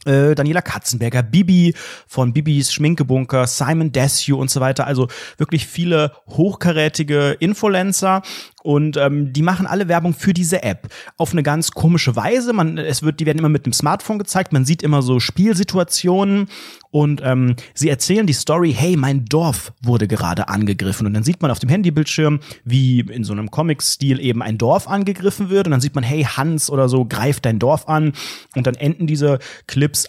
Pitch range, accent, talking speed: 130-165 Hz, German, 180 wpm